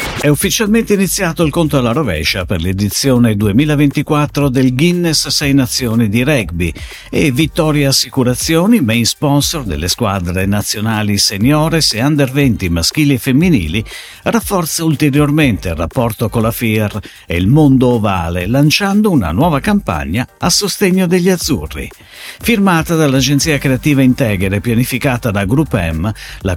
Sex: male